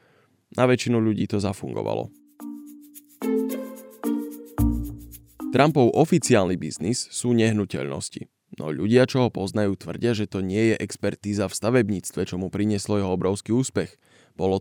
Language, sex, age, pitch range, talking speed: Slovak, male, 20-39, 100-120 Hz, 125 wpm